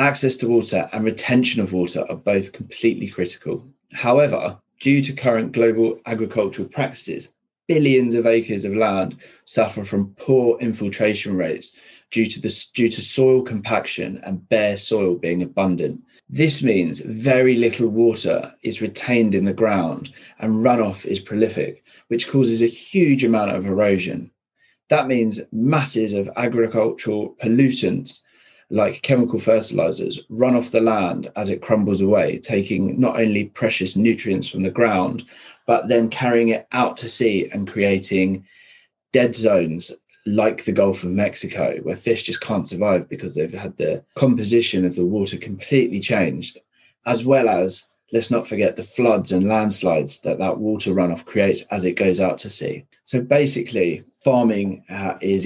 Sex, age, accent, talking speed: male, 20-39, British, 155 wpm